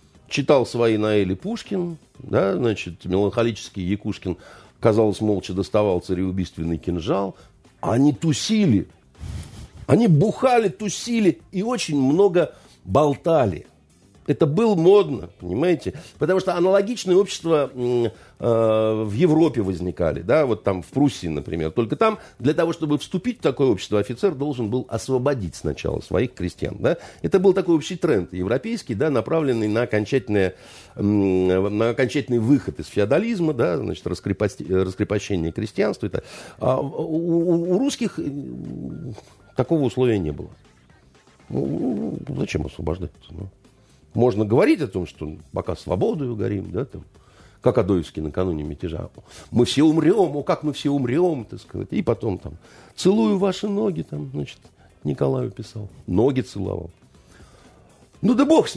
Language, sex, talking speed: Russian, male, 130 wpm